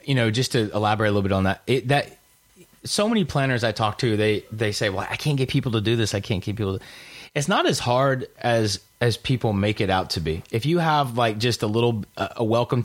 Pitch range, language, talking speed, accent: 110-125 Hz, English, 250 wpm, American